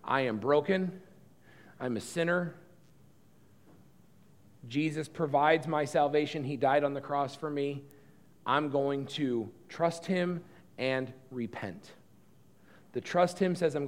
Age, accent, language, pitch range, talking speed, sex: 40-59, American, English, 130-165 Hz, 125 wpm, male